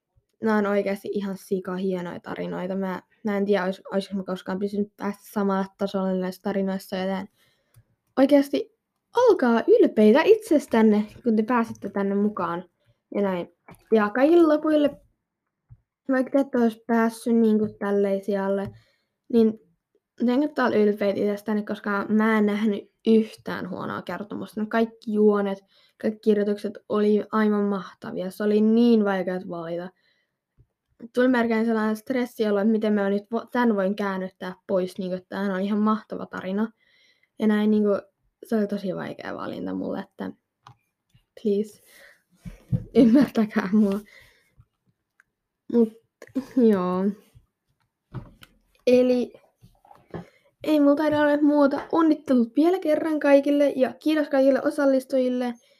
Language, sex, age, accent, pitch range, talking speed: Finnish, female, 10-29, native, 200-270 Hz, 120 wpm